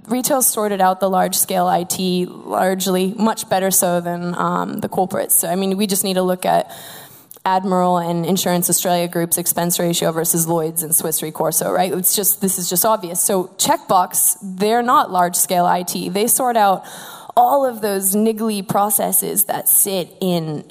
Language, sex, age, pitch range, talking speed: English, female, 20-39, 180-220 Hz, 170 wpm